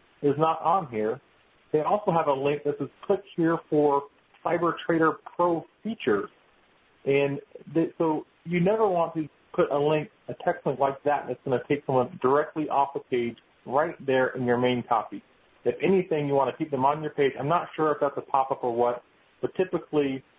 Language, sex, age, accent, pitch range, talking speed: English, male, 40-59, American, 125-160 Hz, 200 wpm